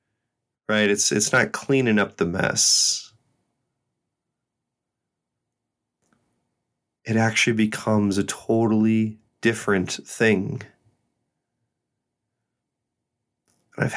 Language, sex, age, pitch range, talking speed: English, male, 30-49, 100-115 Hz, 70 wpm